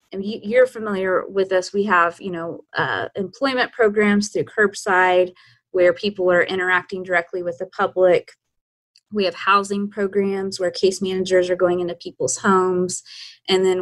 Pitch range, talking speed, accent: 175-205 Hz, 150 wpm, American